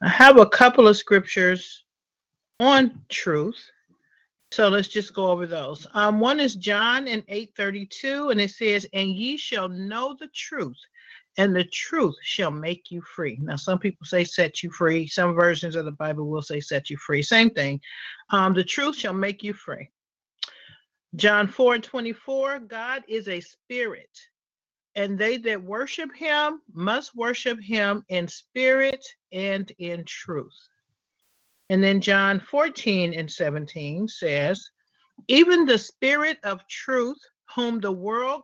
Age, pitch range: 40-59, 180-250 Hz